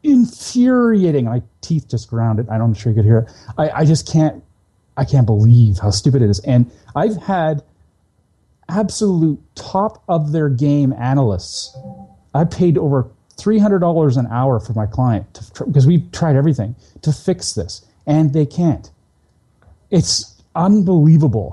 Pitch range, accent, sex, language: 110-155 Hz, American, male, English